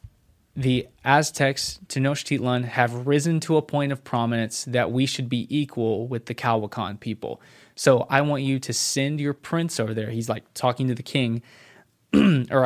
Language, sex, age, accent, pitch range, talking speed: English, male, 20-39, American, 120-135 Hz, 170 wpm